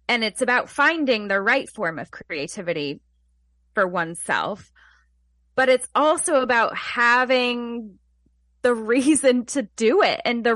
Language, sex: English, female